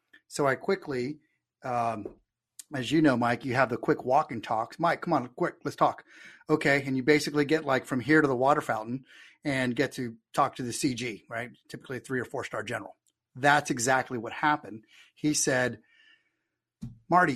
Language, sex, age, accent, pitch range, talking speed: English, male, 30-49, American, 120-150 Hz, 190 wpm